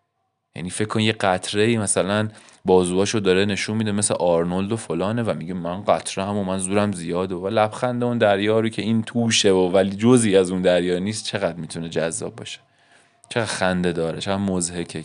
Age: 20-39